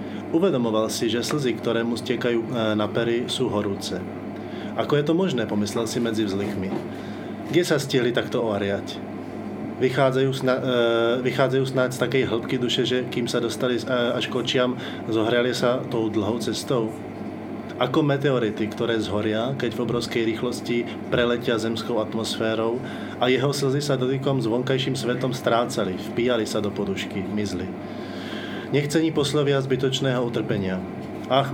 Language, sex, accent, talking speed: Czech, male, native, 135 wpm